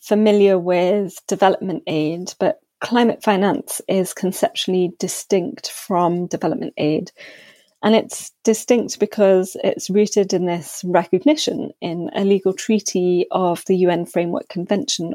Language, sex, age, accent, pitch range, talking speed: English, female, 30-49, British, 175-205 Hz, 125 wpm